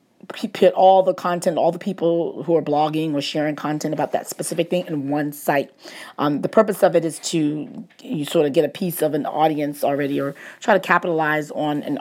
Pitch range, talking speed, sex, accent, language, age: 150-180 Hz, 215 wpm, female, American, English, 40-59